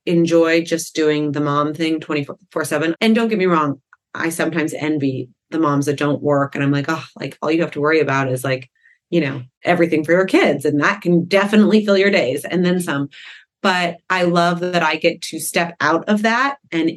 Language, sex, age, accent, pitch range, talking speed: English, female, 30-49, American, 155-200 Hz, 225 wpm